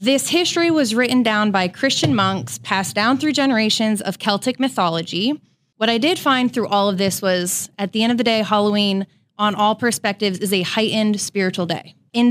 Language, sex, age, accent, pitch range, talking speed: English, female, 20-39, American, 200-250 Hz, 195 wpm